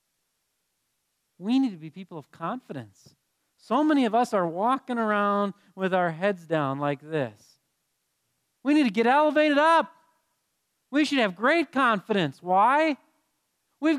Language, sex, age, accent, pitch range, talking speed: English, male, 40-59, American, 165-250 Hz, 140 wpm